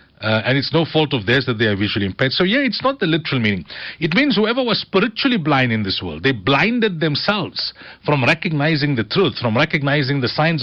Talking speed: 220 wpm